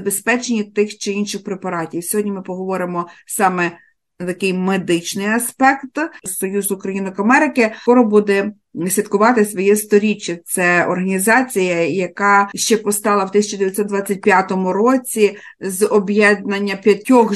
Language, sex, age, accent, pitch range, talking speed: Ukrainian, female, 50-69, native, 190-215 Hz, 105 wpm